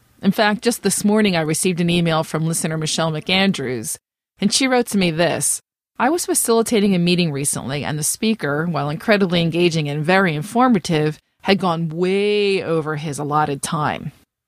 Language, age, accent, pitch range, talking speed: English, 30-49, American, 160-200 Hz, 170 wpm